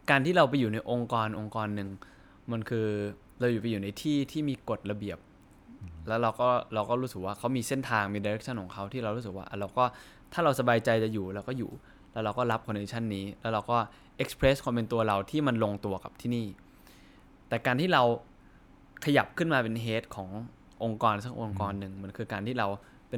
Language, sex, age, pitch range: Thai, male, 20-39, 105-125 Hz